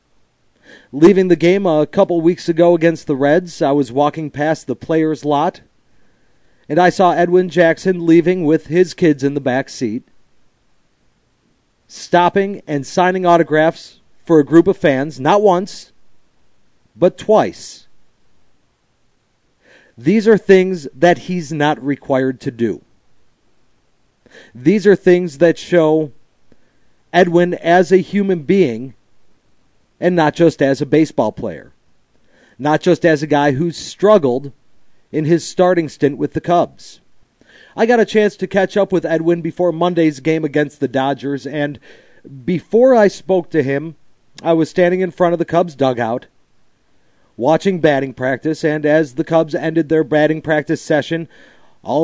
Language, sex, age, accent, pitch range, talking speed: English, male, 40-59, American, 145-175 Hz, 145 wpm